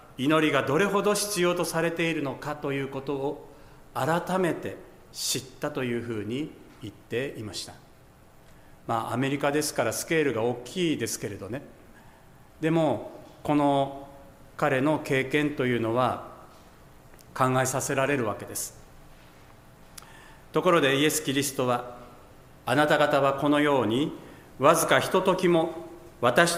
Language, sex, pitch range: Japanese, male, 120-155 Hz